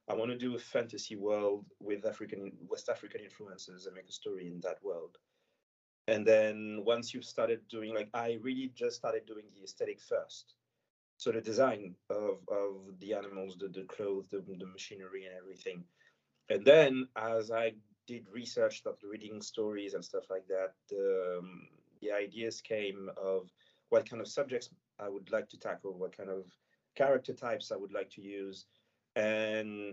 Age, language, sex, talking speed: 30-49, English, male, 175 wpm